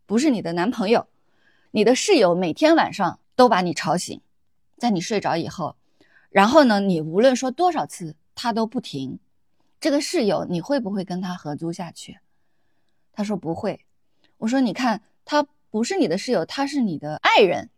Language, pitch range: Chinese, 170-270 Hz